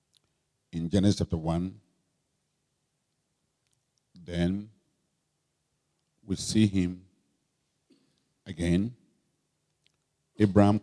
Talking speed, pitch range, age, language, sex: 55 wpm, 85-100 Hz, 50-69, English, male